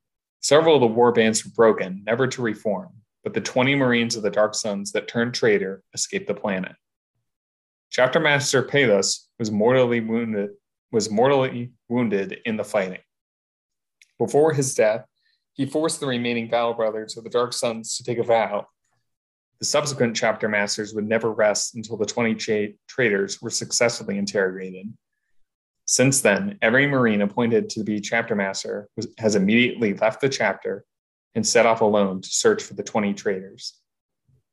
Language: English